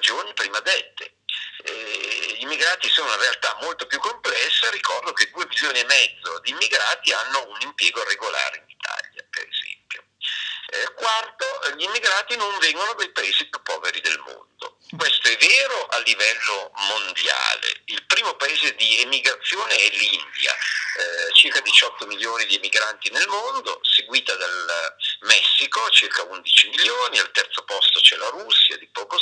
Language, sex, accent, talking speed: Italian, male, native, 140 wpm